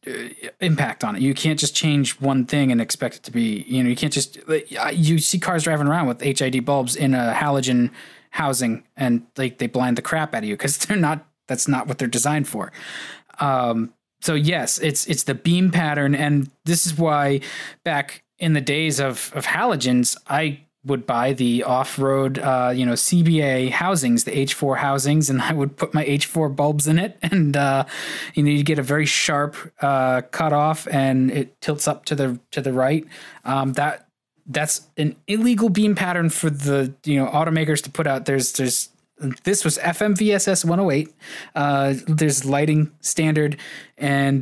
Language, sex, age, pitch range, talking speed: English, male, 20-39, 135-155 Hz, 185 wpm